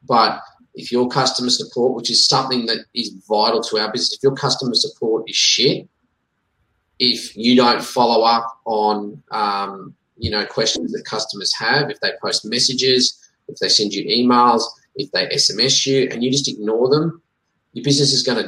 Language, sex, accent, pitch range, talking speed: English, male, Australian, 115-140 Hz, 180 wpm